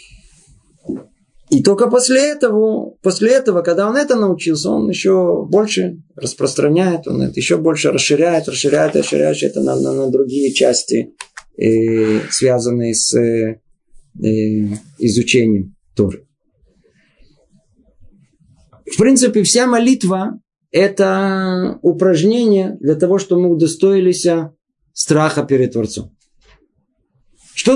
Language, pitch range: Russian, 145-195 Hz